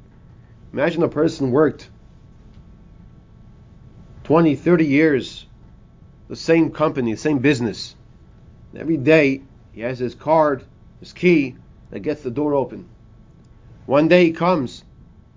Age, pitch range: 30-49, 125-160 Hz